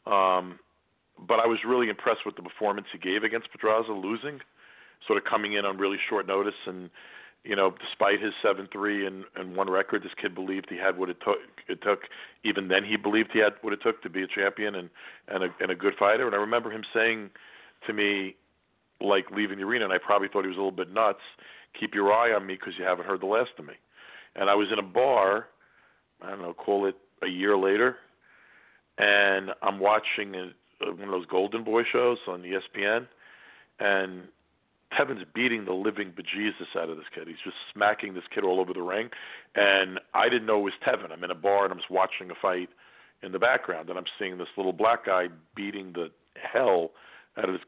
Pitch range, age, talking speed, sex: 95-105 Hz, 40-59, 220 wpm, male